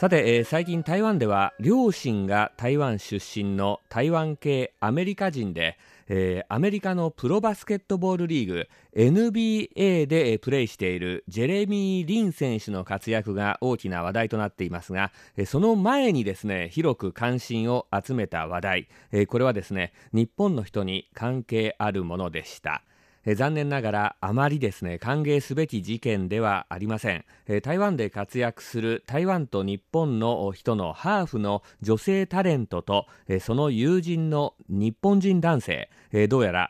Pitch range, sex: 100-160 Hz, male